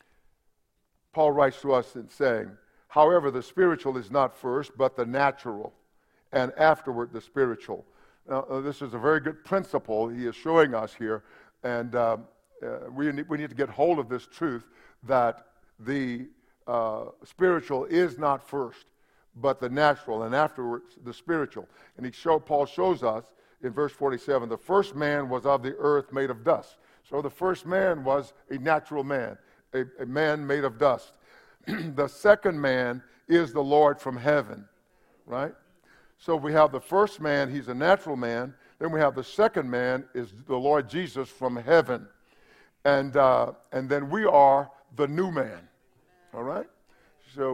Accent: American